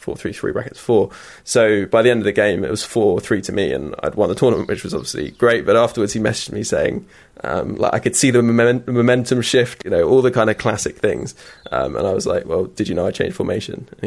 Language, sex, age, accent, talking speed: English, male, 20-39, British, 265 wpm